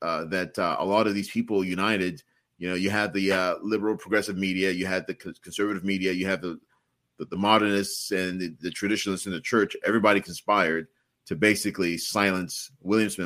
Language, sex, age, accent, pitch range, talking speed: English, male, 40-59, American, 95-110 Hz, 195 wpm